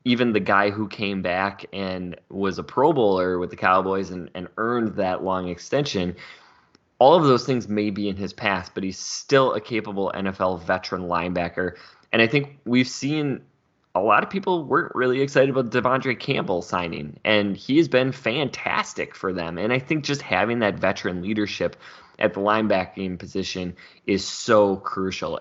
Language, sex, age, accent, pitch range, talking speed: English, male, 20-39, American, 95-120 Hz, 175 wpm